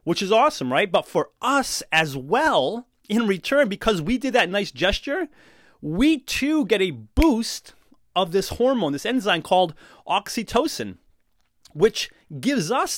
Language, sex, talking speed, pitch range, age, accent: English, male, 150 wpm, 160-225 Hz, 30-49, American